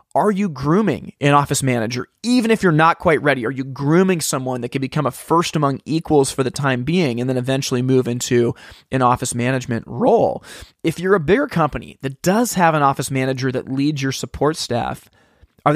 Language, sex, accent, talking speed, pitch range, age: English, male, American, 200 wpm, 130-160 Hz, 30-49